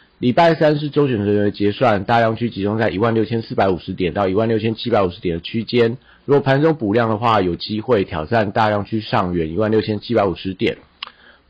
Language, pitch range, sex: Chinese, 95-120 Hz, male